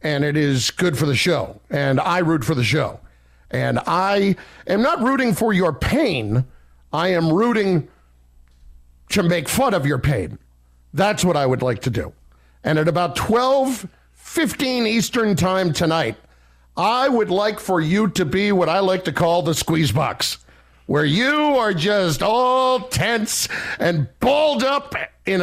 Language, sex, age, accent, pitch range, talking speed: English, male, 50-69, American, 140-235 Hz, 165 wpm